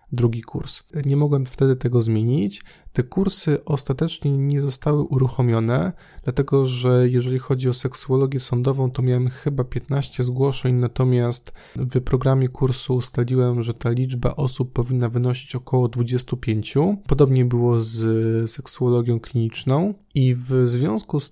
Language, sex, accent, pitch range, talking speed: Polish, male, native, 120-140 Hz, 130 wpm